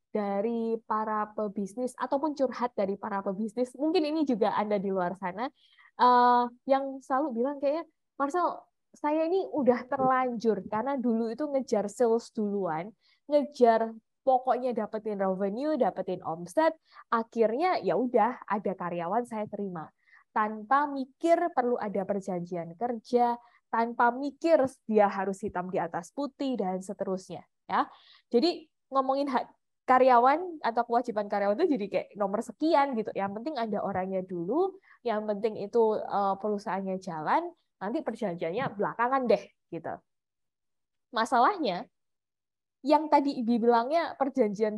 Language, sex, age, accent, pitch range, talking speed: Indonesian, female, 20-39, native, 200-270 Hz, 125 wpm